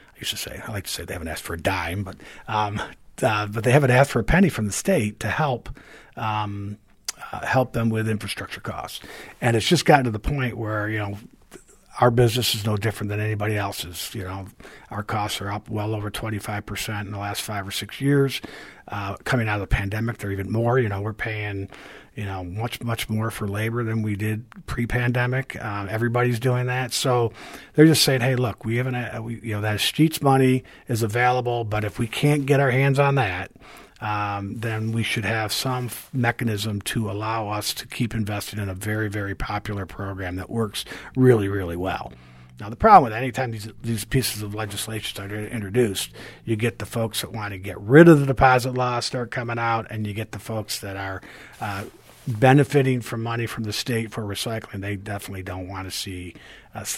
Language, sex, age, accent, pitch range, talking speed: English, male, 50-69, American, 105-125 Hz, 210 wpm